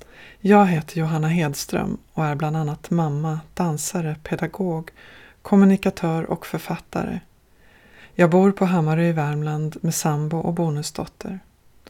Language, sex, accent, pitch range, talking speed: English, female, Swedish, 150-185 Hz, 120 wpm